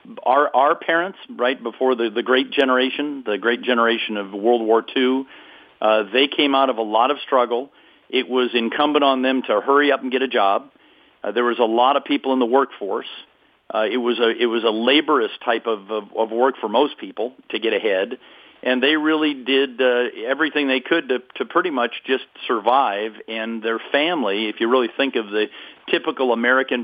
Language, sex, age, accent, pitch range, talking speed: English, male, 50-69, American, 115-140 Hz, 205 wpm